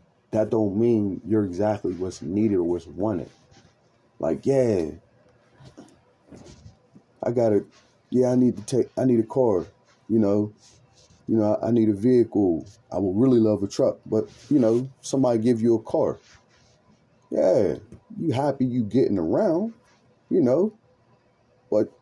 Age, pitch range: 30-49, 110-140 Hz